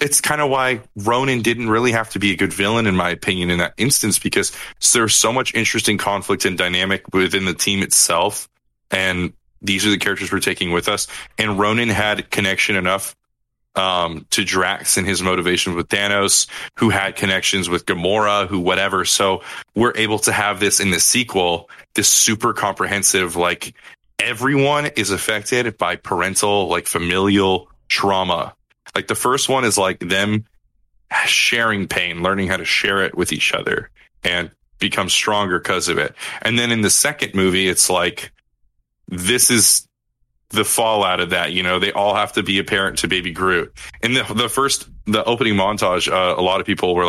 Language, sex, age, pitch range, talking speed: English, male, 20-39, 90-110 Hz, 180 wpm